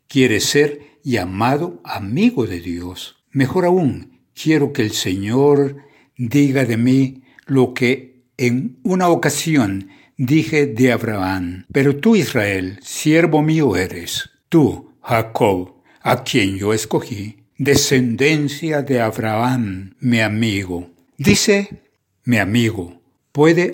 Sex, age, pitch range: male, 60-79, 115-150 Hz